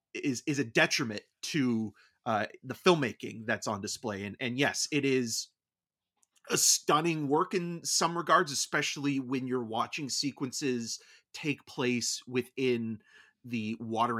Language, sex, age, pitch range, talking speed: English, male, 30-49, 115-160 Hz, 135 wpm